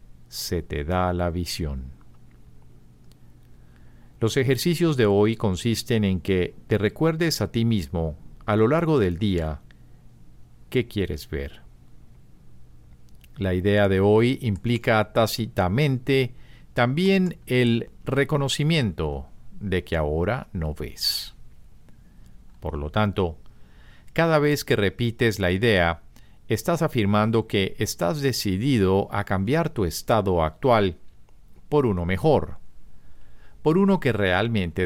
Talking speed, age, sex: 110 wpm, 50-69, male